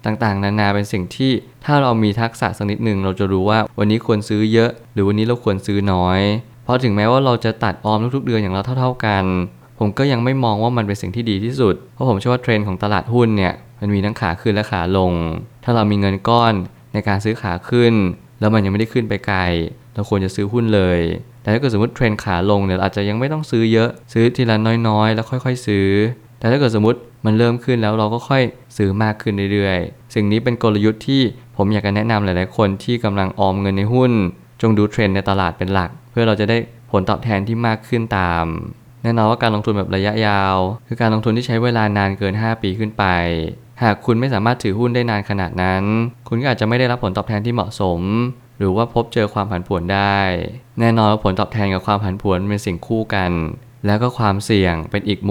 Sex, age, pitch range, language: male, 20-39, 100-120 Hz, Thai